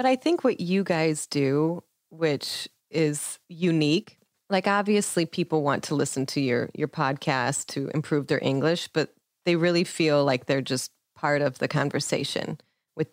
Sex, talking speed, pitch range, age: female, 165 wpm, 145-180 Hz, 30-49